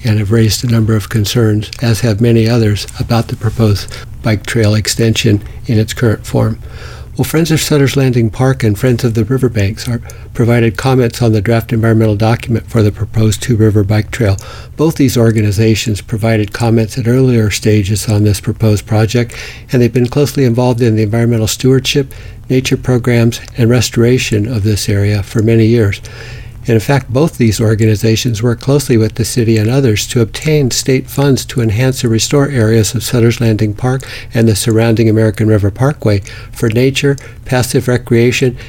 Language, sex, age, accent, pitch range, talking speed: English, male, 60-79, American, 110-120 Hz, 175 wpm